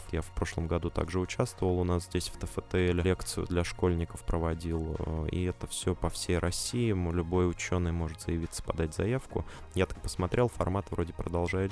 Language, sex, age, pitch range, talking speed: Russian, male, 20-39, 80-95 Hz, 170 wpm